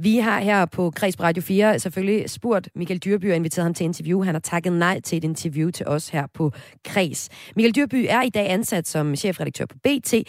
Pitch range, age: 150-205 Hz, 30-49